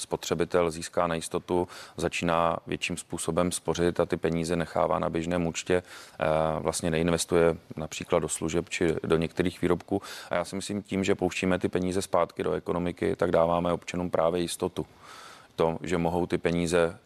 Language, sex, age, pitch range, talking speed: Czech, male, 30-49, 85-90 Hz, 160 wpm